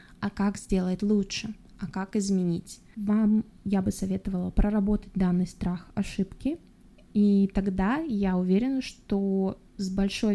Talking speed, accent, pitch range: 130 wpm, native, 195-230 Hz